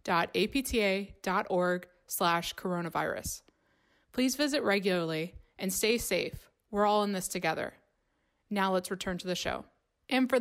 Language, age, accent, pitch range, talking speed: English, 20-39, American, 180-225 Hz, 135 wpm